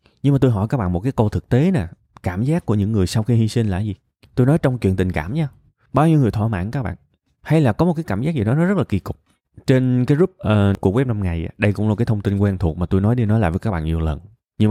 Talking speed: 320 wpm